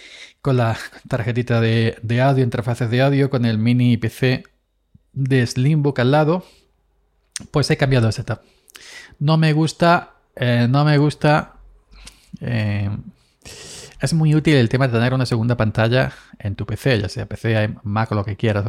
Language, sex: Spanish, male